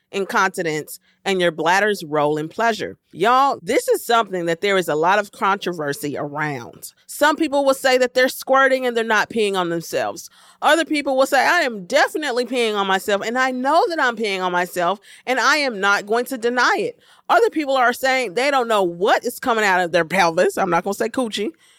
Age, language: 40-59, English